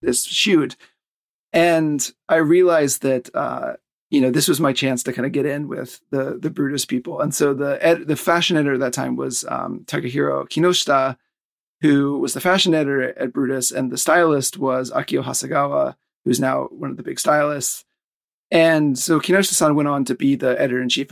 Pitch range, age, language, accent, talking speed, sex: 130-155 Hz, 30-49, English, American, 190 wpm, male